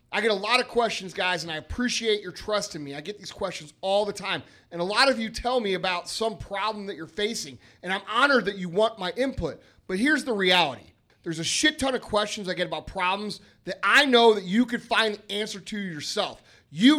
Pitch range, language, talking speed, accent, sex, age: 190-250 Hz, English, 240 wpm, American, male, 30-49